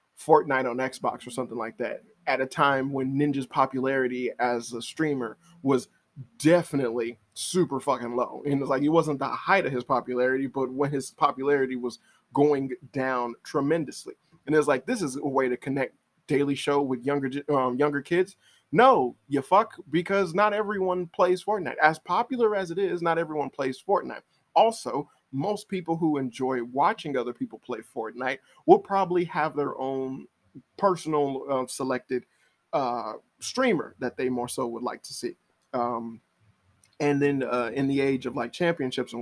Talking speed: 175 wpm